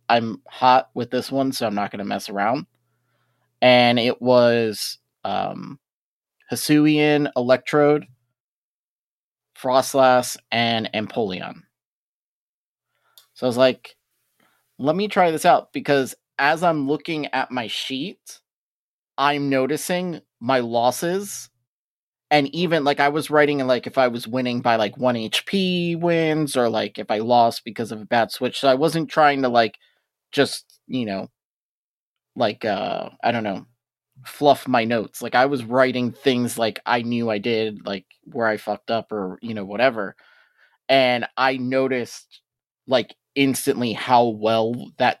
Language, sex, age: English, male, 30-49